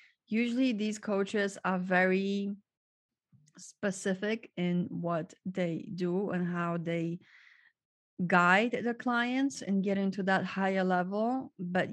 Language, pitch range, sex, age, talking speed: English, 180-210 Hz, female, 30-49, 115 wpm